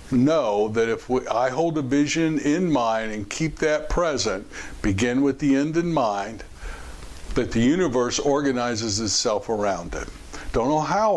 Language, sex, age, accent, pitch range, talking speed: English, male, 60-79, American, 110-150 Hz, 155 wpm